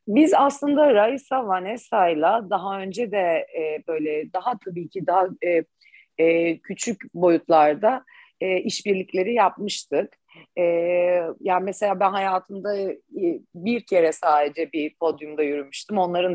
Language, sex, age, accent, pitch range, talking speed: Turkish, female, 40-59, native, 165-195 Hz, 100 wpm